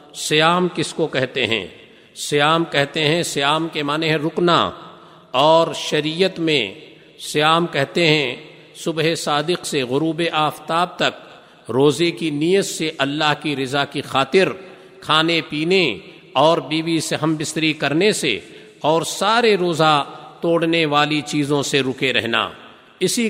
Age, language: 50-69, Urdu